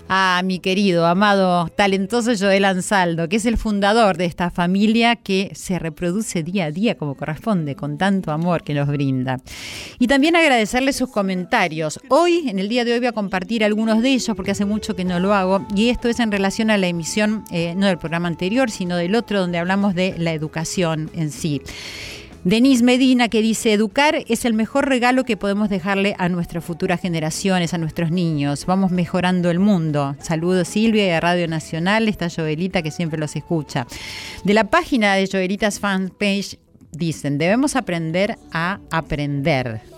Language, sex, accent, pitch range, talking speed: Spanish, female, Argentinian, 160-205 Hz, 180 wpm